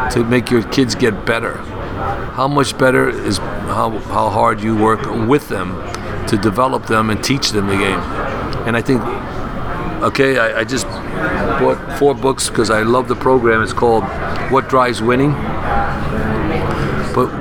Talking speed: 160 wpm